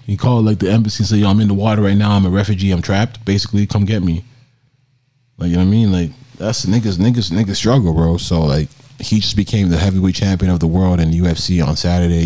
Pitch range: 85-120 Hz